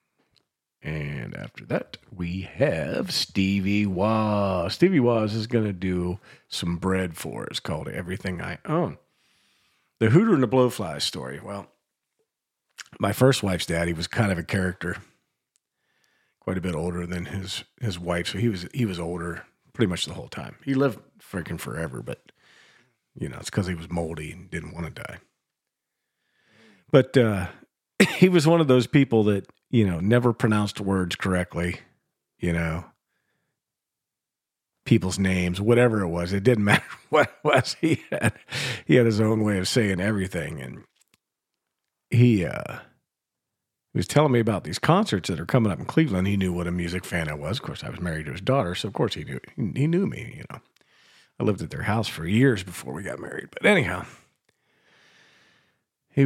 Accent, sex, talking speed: American, male, 180 wpm